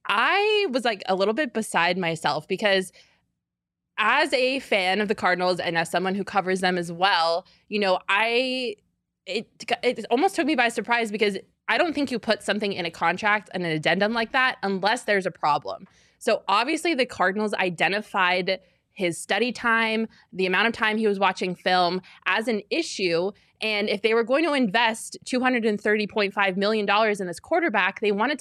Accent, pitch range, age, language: American, 180-230 Hz, 20-39, English